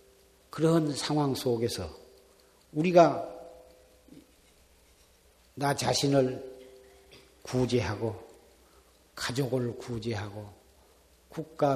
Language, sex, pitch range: Korean, male, 110-165 Hz